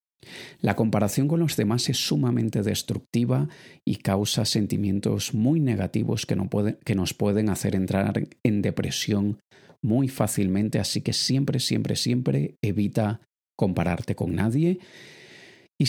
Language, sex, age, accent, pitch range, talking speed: Spanish, male, 30-49, Spanish, 100-125 Hz, 125 wpm